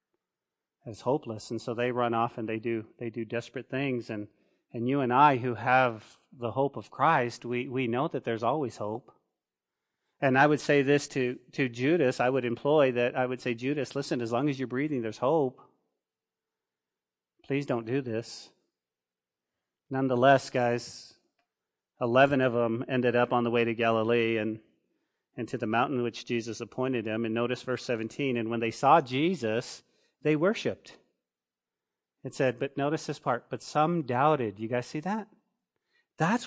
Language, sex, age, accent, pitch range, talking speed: English, male, 40-59, American, 120-170 Hz, 175 wpm